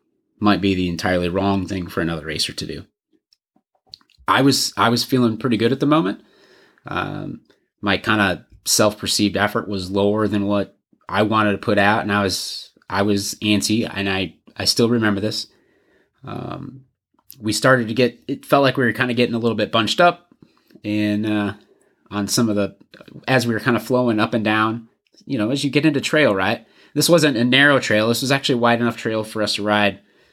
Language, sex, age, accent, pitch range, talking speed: English, male, 30-49, American, 100-120 Hz, 210 wpm